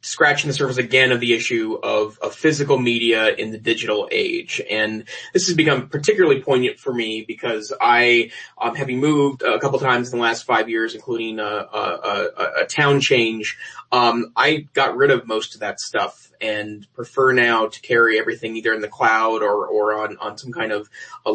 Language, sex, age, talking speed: English, male, 30-49, 200 wpm